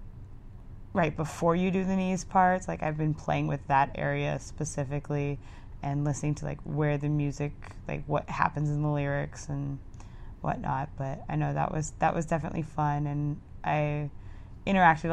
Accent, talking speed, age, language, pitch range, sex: American, 165 wpm, 20-39, English, 115-165 Hz, female